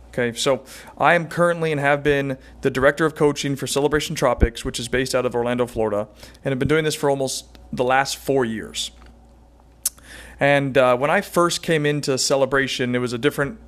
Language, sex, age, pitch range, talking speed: English, male, 40-59, 100-145 Hz, 195 wpm